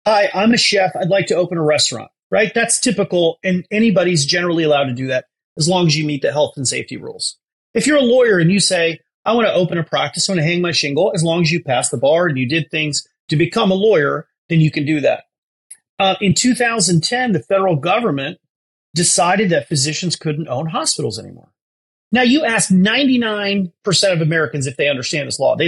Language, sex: English, male